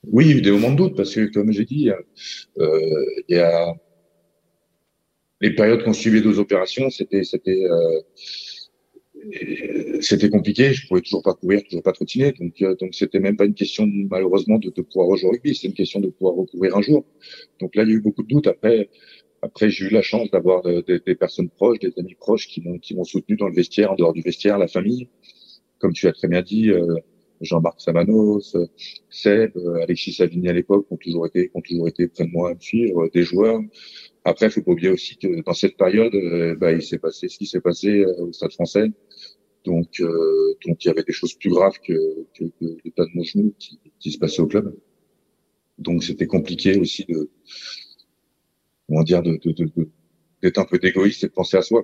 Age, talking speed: 40-59, 220 wpm